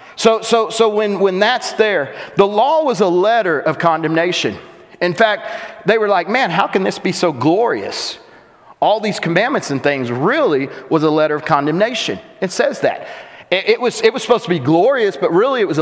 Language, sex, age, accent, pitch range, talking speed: English, male, 40-59, American, 160-225 Hz, 200 wpm